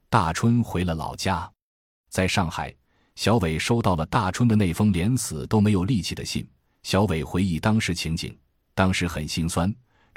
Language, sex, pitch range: Chinese, male, 80-105 Hz